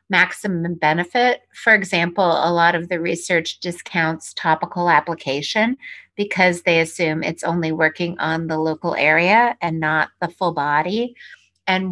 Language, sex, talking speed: English, female, 140 wpm